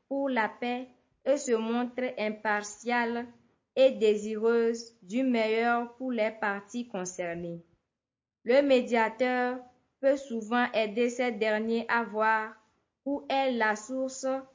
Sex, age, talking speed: female, 20-39, 115 wpm